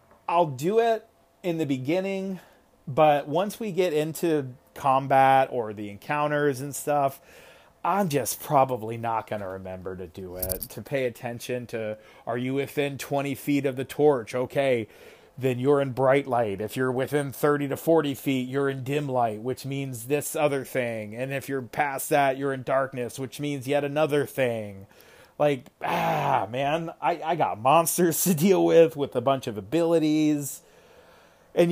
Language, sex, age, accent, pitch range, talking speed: English, male, 30-49, American, 130-160 Hz, 170 wpm